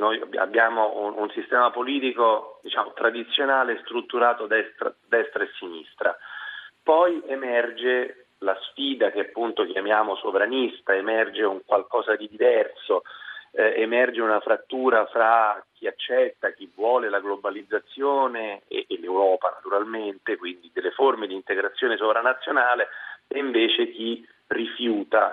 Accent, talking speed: native, 120 wpm